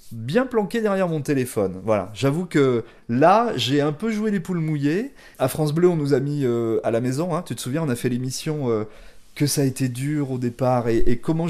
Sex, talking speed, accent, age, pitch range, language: male, 240 wpm, French, 30-49, 130-180 Hz, French